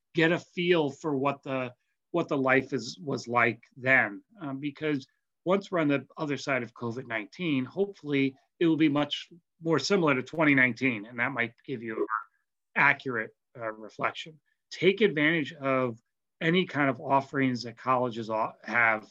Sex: male